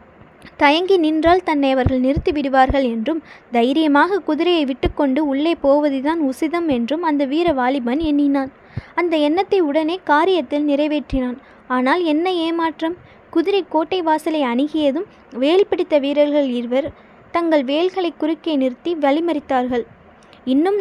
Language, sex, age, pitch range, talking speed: Tamil, female, 20-39, 270-335 Hz, 110 wpm